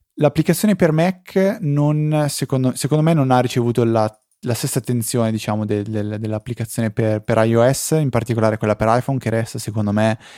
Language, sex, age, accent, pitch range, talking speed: Italian, male, 20-39, native, 110-125 Hz, 175 wpm